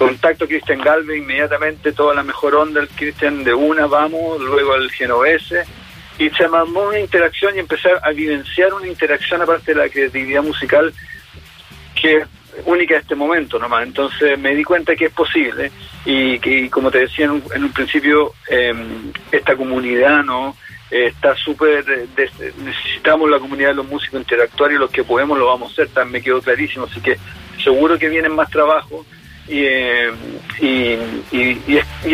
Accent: Argentinian